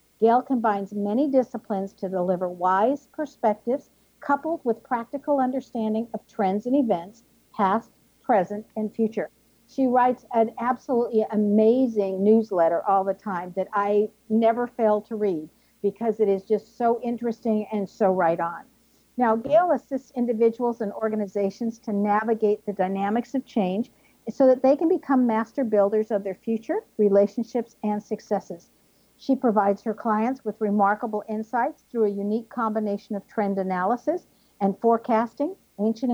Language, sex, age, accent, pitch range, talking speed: English, female, 60-79, American, 205-240 Hz, 145 wpm